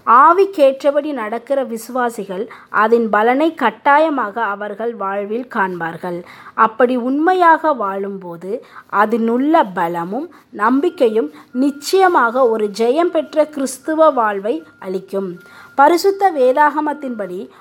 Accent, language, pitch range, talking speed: native, Tamil, 210-305 Hz, 90 wpm